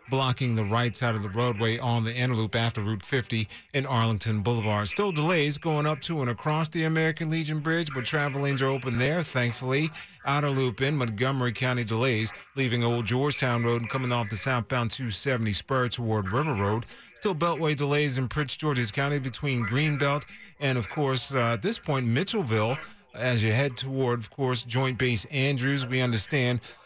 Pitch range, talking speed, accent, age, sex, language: 115-145 Hz, 185 wpm, American, 40-59, male, English